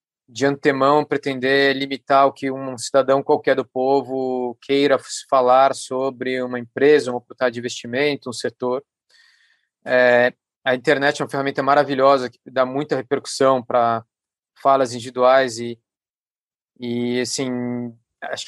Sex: male